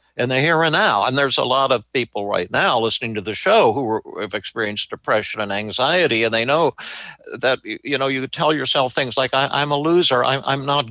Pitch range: 110-140 Hz